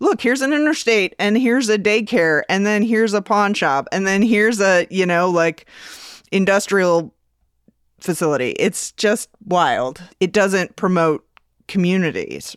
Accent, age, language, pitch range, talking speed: American, 30-49, English, 170-220 Hz, 145 wpm